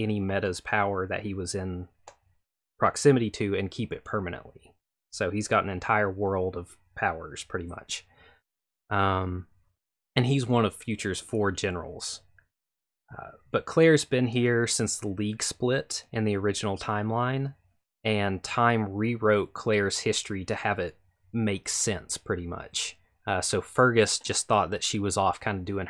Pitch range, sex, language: 95-115 Hz, male, English